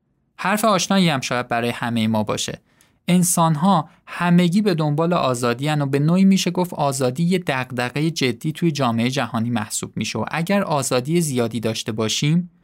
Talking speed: 170 wpm